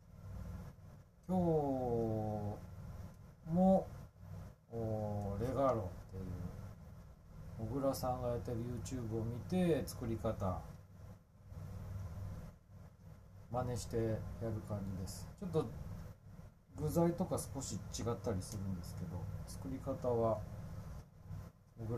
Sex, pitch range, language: male, 90-120 Hz, Japanese